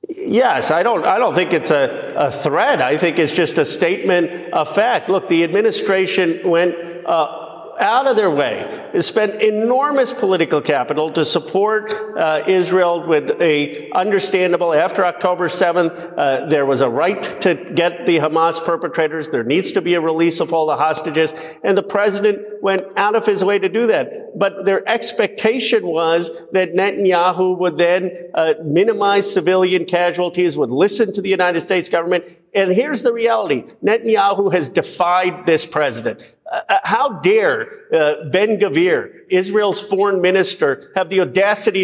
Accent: American